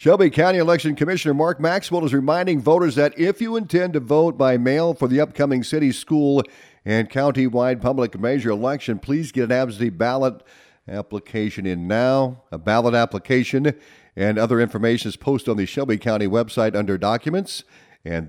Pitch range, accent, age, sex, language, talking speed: 105-145 Hz, American, 50-69, male, English, 165 wpm